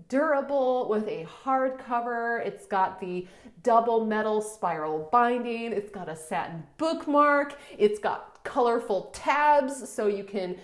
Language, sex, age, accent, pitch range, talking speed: English, female, 30-49, American, 185-235 Hz, 135 wpm